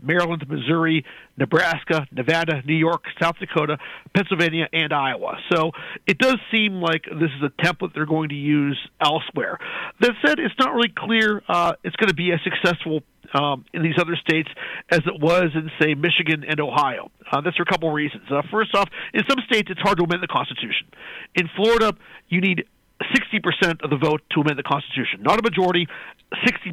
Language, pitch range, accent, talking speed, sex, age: English, 165-200 Hz, American, 195 wpm, male, 50-69